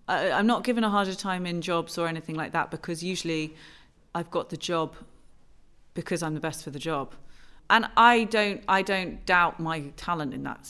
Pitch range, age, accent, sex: 160-180 Hz, 30-49, British, female